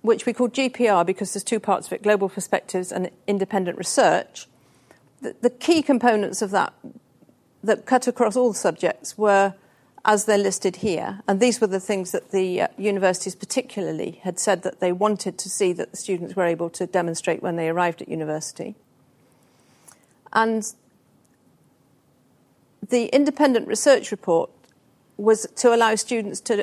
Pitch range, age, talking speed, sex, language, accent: 175-225 Hz, 40-59, 155 wpm, female, English, British